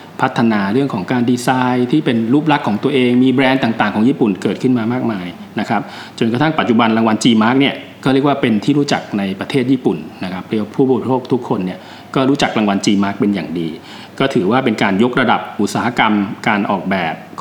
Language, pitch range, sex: Thai, 105-130 Hz, male